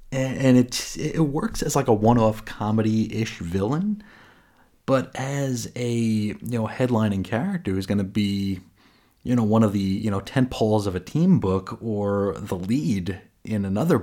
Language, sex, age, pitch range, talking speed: English, male, 30-49, 95-125 Hz, 170 wpm